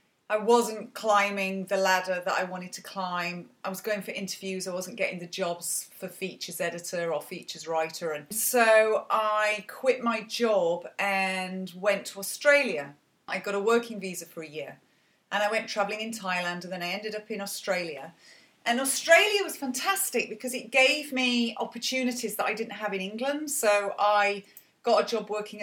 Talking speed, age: 185 wpm, 30-49